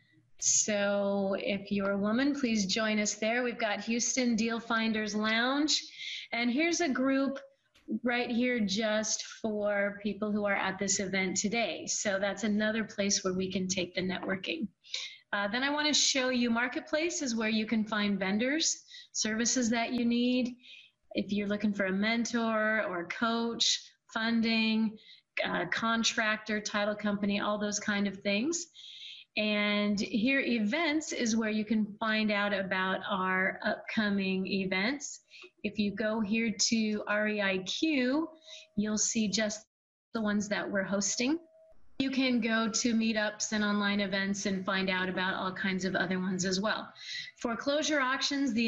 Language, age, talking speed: English, 30-49, 150 wpm